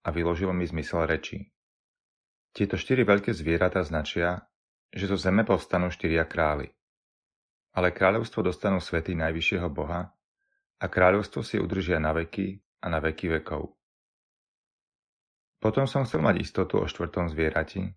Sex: male